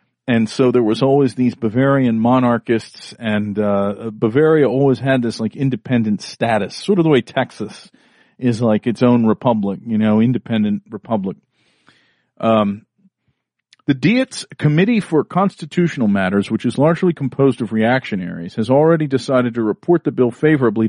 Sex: male